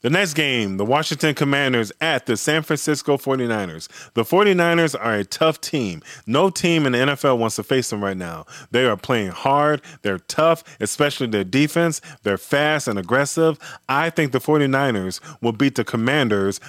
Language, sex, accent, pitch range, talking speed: English, male, American, 115-155 Hz, 175 wpm